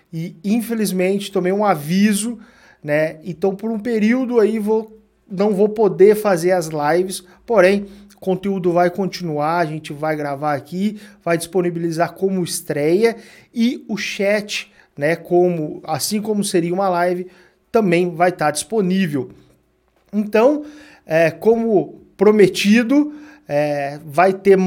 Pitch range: 170-210 Hz